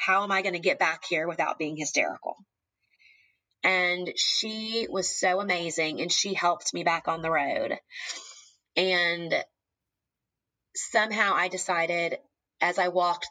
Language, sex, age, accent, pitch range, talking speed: English, female, 20-39, American, 165-190 Hz, 140 wpm